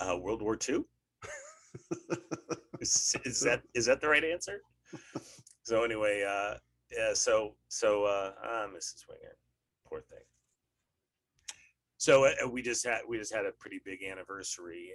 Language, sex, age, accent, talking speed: English, male, 30-49, American, 145 wpm